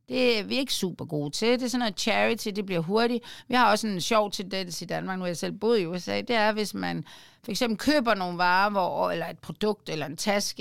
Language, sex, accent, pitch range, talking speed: Danish, female, native, 175-245 Hz, 250 wpm